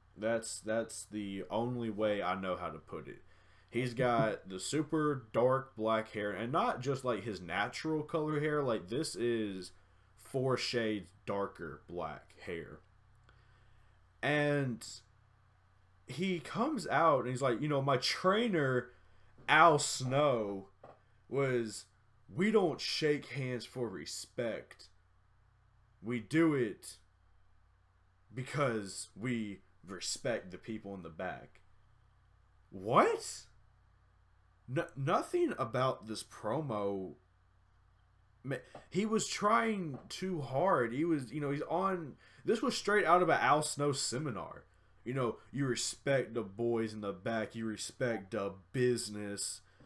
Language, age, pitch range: English, 20-39, 100-135 Hz